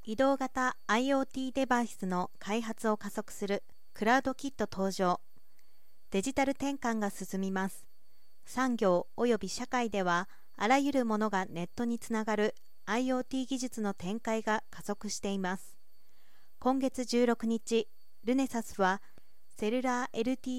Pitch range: 200-255 Hz